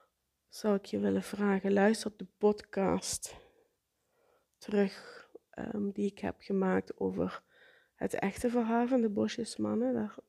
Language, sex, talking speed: Dutch, female, 120 wpm